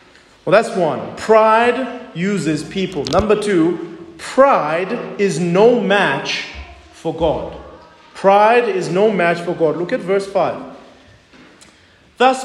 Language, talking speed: English, 120 wpm